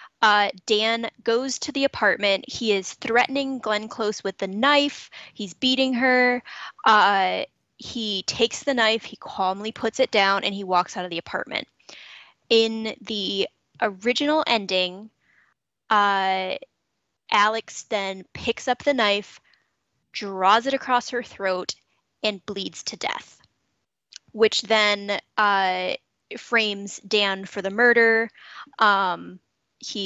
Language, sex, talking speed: English, female, 130 wpm